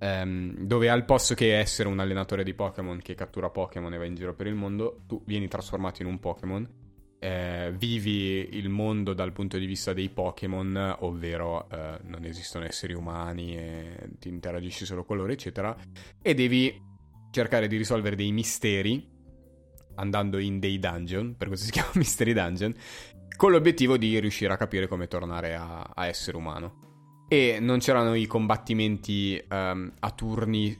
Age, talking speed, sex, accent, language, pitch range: 20-39, 165 wpm, male, native, Italian, 95-115 Hz